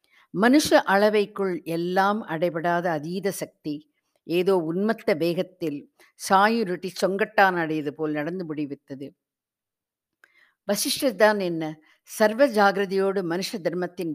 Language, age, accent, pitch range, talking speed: Tamil, 50-69, native, 155-200 Hz, 85 wpm